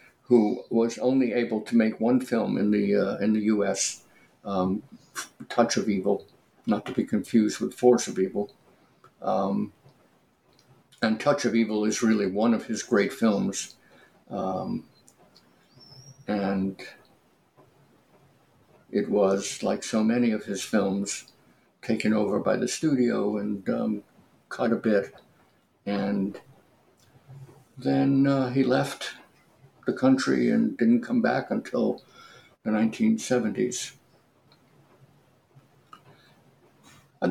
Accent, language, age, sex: American, English, 60-79, male